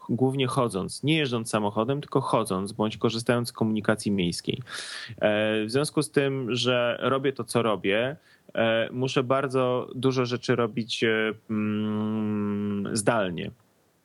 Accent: native